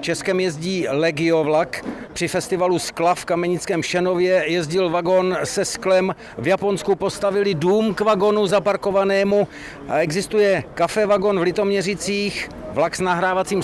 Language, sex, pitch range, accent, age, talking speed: Czech, male, 170-205 Hz, native, 60-79, 125 wpm